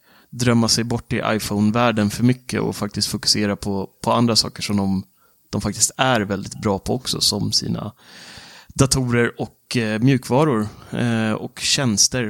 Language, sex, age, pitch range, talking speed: Swedish, male, 30-49, 105-125 Hz, 155 wpm